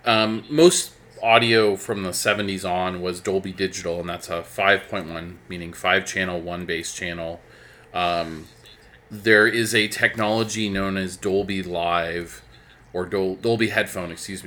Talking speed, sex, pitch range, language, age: 135 wpm, male, 90-105 Hz, English, 30-49